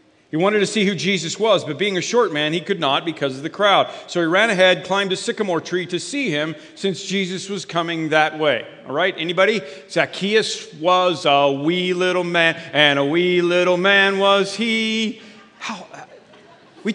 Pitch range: 170-210 Hz